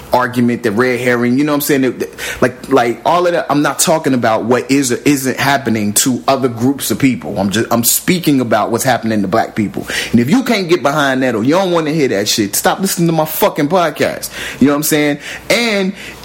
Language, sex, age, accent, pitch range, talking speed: English, male, 30-49, American, 115-155 Hz, 235 wpm